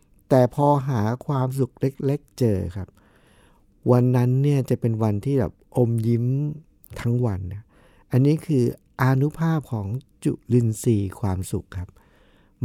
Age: 60-79